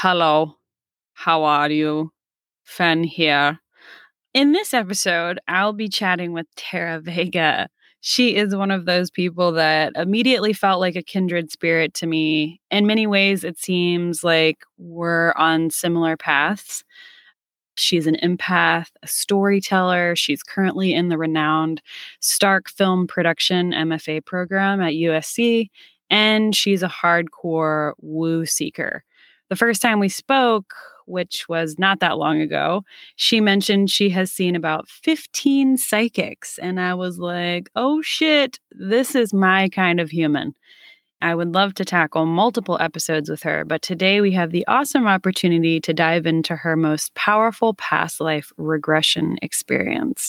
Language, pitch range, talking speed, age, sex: English, 165-200 Hz, 145 wpm, 20-39, female